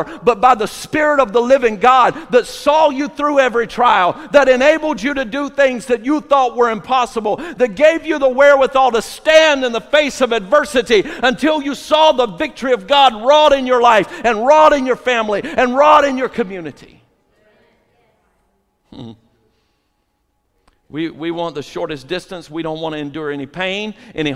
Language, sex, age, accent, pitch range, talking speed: English, male, 50-69, American, 155-235 Hz, 180 wpm